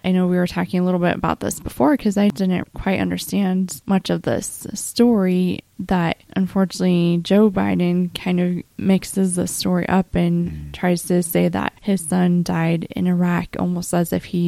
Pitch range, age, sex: 170-195 Hz, 20-39, female